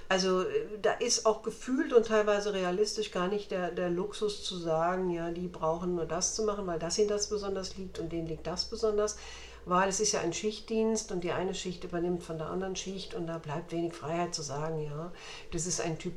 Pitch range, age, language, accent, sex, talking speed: 170-220 Hz, 60-79, German, German, female, 225 wpm